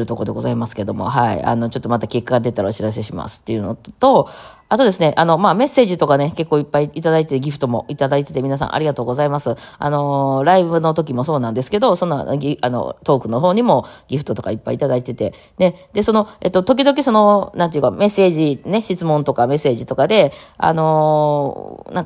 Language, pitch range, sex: Japanese, 140-190 Hz, female